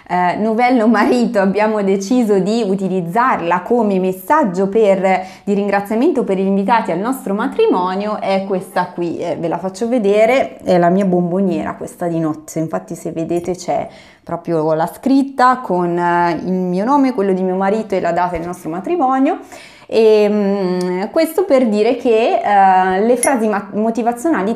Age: 20-39